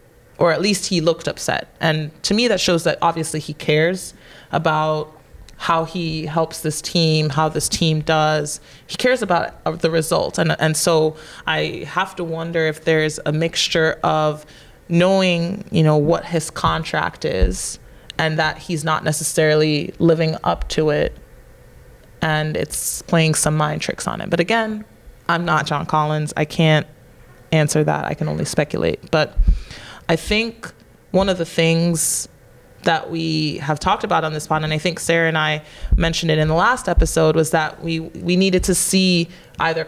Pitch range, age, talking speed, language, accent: 155-170 Hz, 20-39, 175 wpm, English, American